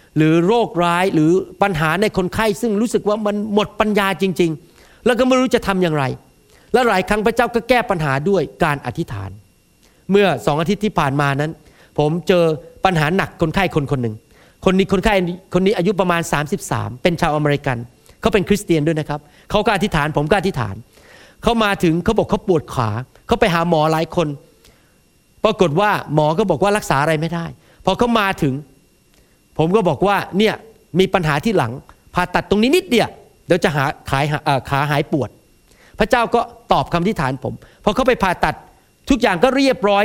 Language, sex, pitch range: Thai, male, 155-215 Hz